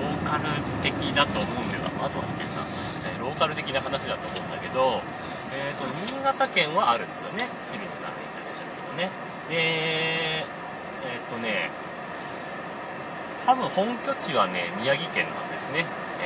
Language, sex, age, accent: Japanese, male, 30-49, native